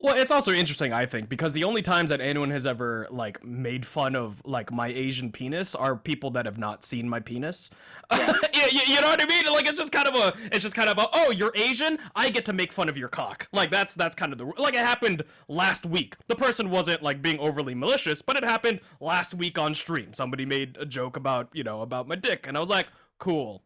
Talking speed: 250 wpm